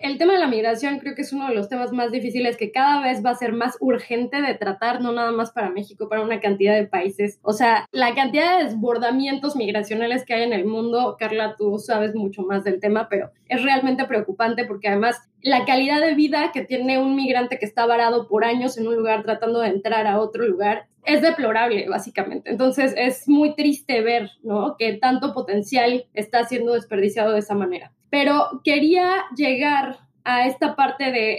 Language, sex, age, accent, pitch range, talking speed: Spanish, female, 20-39, Mexican, 220-275 Hz, 205 wpm